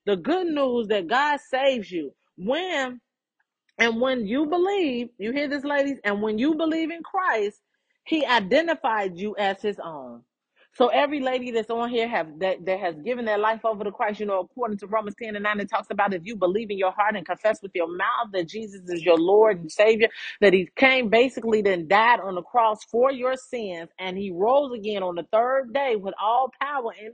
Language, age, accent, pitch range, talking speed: English, 40-59, American, 195-260 Hz, 215 wpm